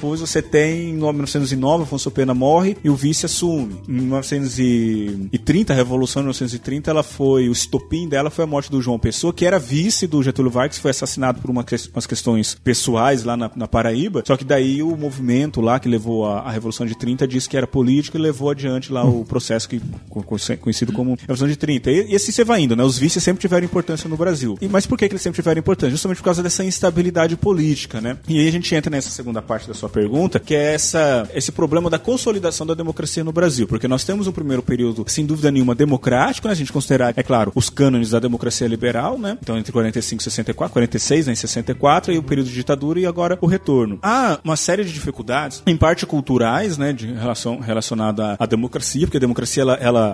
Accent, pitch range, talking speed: Brazilian, 120-160 Hz, 225 wpm